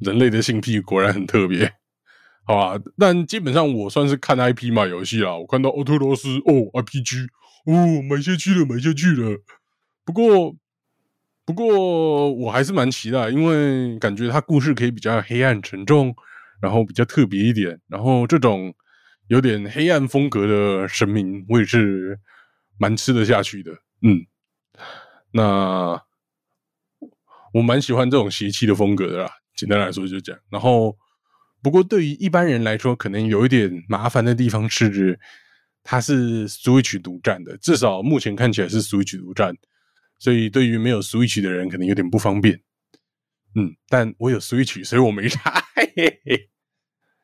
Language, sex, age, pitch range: Chinese, male, 20-39, 105-145 Hz